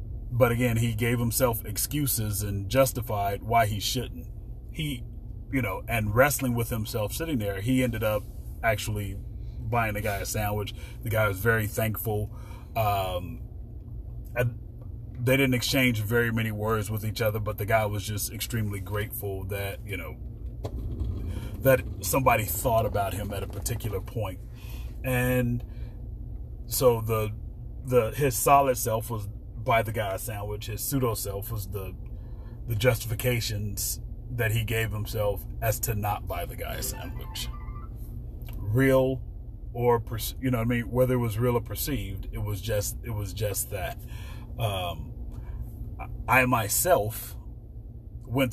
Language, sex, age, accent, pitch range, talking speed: English, male, 30-49, American, 105-120 Hz, 150 wpm